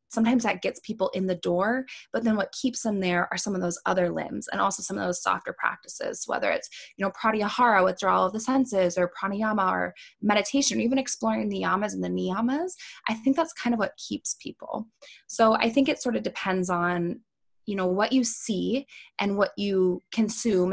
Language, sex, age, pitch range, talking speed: English, female, 20-39, 180-230 Hz, 210 wpm